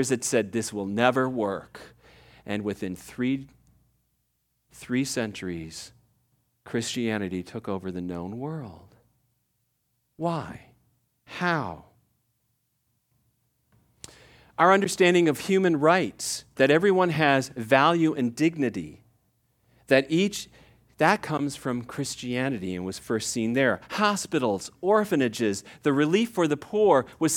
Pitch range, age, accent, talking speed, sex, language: 120-175 Hz, 40-59, American, 105 wpm, male, English